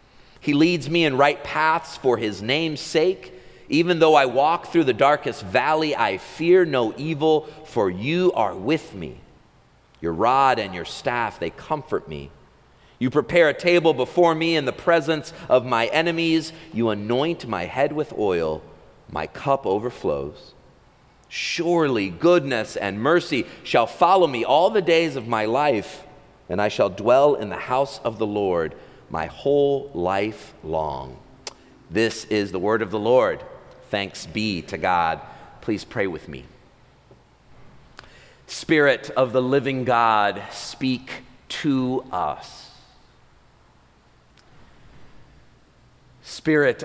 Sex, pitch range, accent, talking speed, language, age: male, 115-160 Hz, American, 135 wpm, English, 40-59